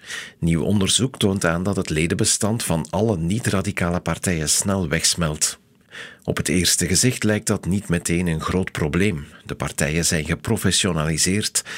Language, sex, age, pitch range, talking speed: Dutch, male, 50-69, 85-105 Hz, 145 wpm